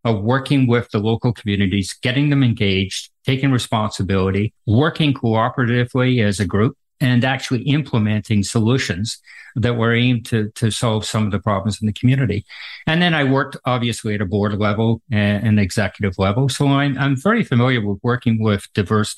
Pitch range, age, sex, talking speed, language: 105-135 Hz, 50-69, male, 170 wpm, English